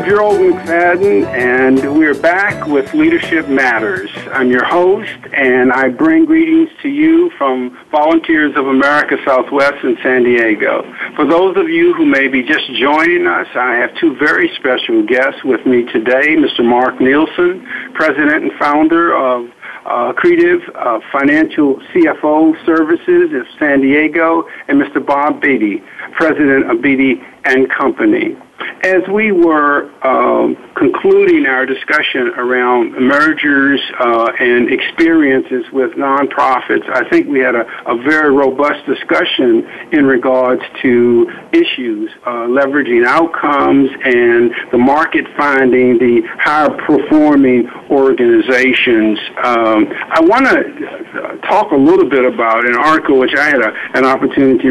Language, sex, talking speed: English, male, 135 wpm